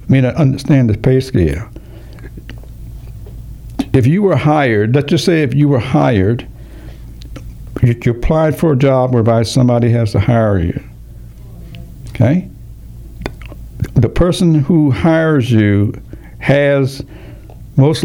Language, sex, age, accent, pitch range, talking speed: English, male, 60-79, American, 110-130 Hz, 125 wpm